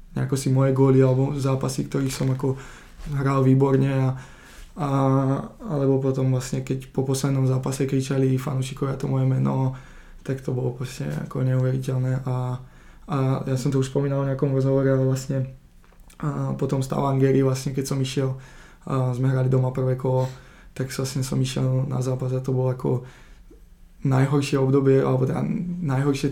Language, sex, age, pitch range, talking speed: Czech, male, 20-39, 130-145 Hz, 150 wpm